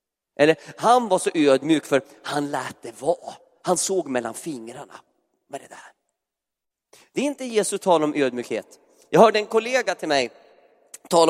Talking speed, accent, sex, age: 165 wpm, native, male, 30-49